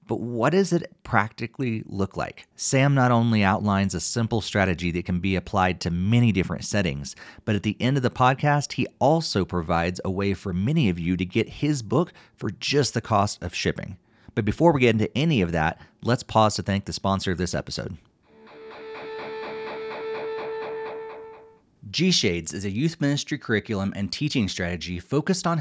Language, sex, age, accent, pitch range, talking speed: English, male, 30-49, American, 100-135 Hz, 180 wpm